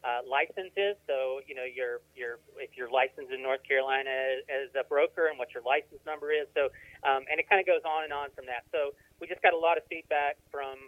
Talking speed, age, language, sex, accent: 245 wpm, 30-49, English, male, American